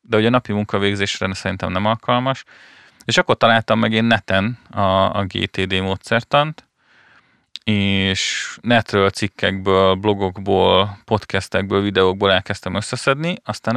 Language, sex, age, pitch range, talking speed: Hungarian, male, 30-49, 95-110 Hz, 110 wpm